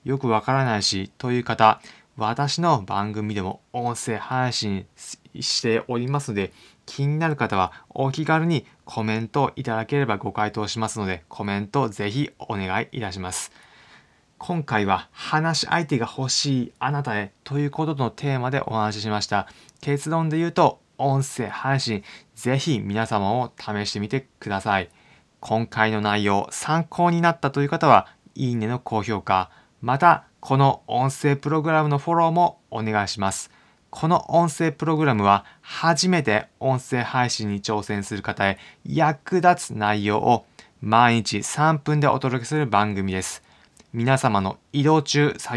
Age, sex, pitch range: 20-39, male, 105-140 Hz